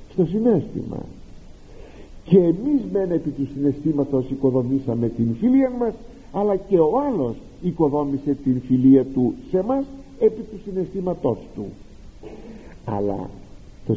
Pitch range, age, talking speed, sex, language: 125-195 Hz, 50-69, 120 wpm, male, Greek